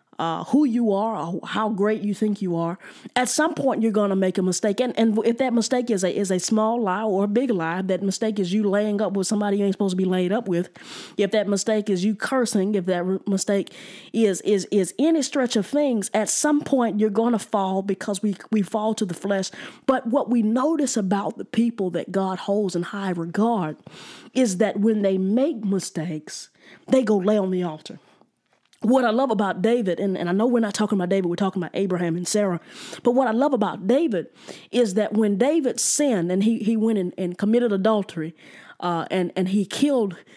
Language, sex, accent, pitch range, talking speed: English, female, American, 190-245 Hz, 220 wpm